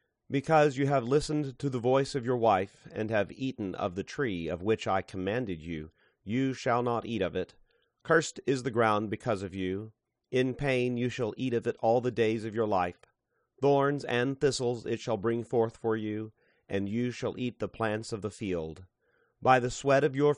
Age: 30-49